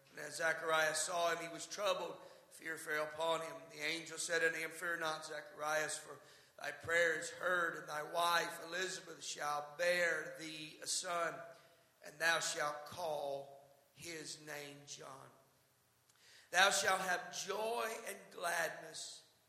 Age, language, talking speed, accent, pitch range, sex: 50-69, English, 145 wpm, American, 145-170 Hz, male